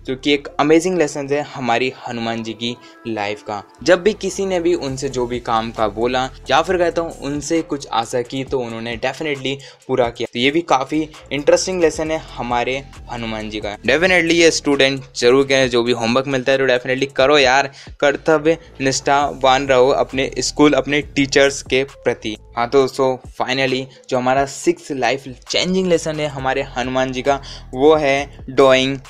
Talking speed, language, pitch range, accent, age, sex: 180 wpm, Hindi, 120-145 Hz, native, 20-39, male